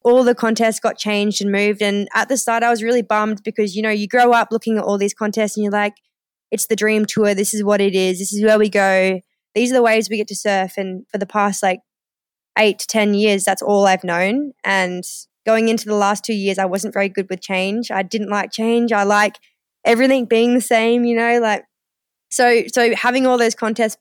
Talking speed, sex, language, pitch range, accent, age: 240 wpm, female, English, 195-225 Hz, Australian, 20-39